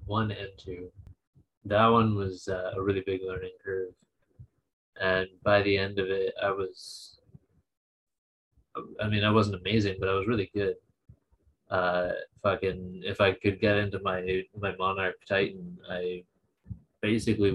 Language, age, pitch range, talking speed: English, 30-49, 95-110 Hz, 150 wpm